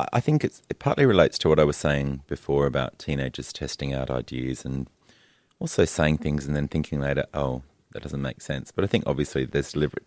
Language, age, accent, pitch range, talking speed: English, 30-49, Australian, 65-75 Hz, 215 wpm